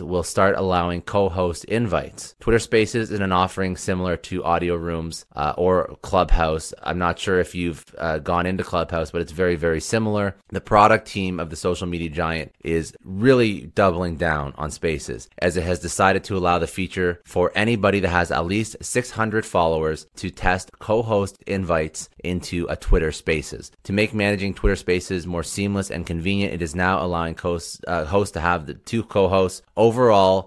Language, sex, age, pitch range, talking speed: English, male, 30-49, 80-95 Hz, 180 wpm